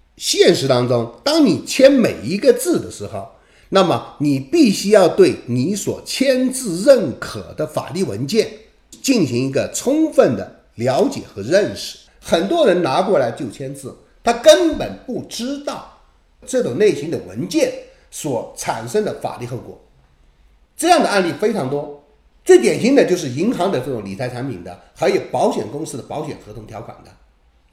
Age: 50-69